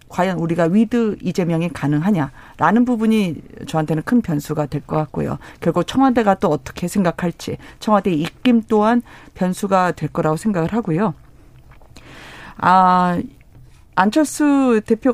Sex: female